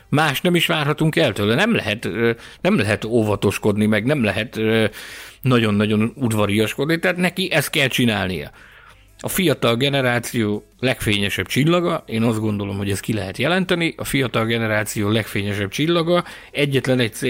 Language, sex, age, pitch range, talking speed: Hungarian, male, 50-69, 105-140 Hz, 140 wpm